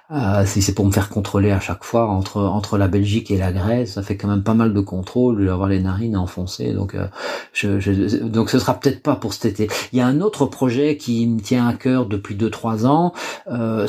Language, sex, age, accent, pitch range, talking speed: French, male, 40-59, French, 100-120 Hz, 245 wpm